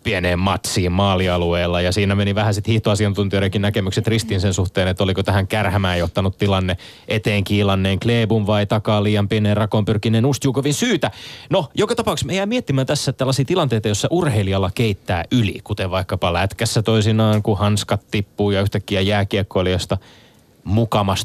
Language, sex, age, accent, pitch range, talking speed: Finnish, male, 20-39, native, 95-115 Hz, 145 wpm